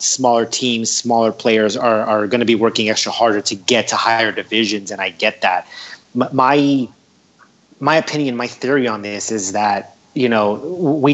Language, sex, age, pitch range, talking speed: English, male, 30-49, 115-135 Hz, 180 wpm